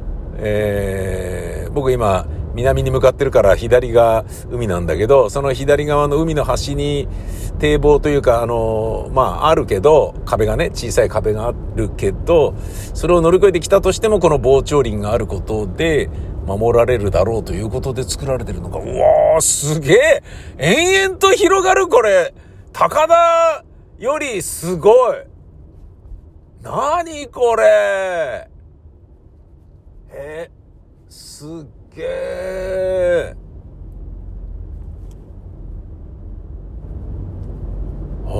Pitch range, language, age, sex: 85-140 Hz, Japanese, 50-69, male